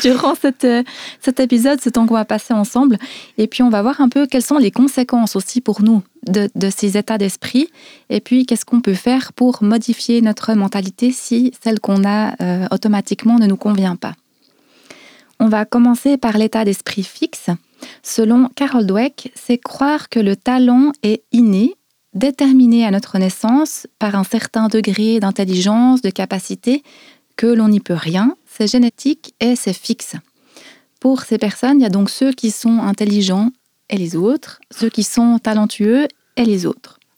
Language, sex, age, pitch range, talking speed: French, female, 30-49, 205-250 Hz, 175 wpm